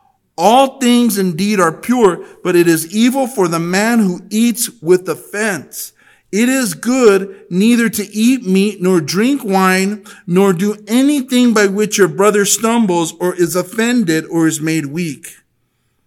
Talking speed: 155 wpm